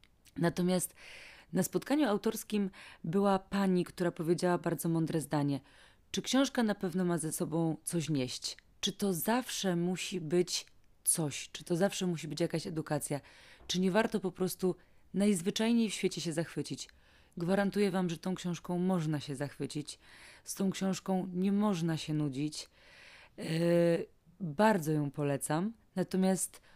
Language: Polish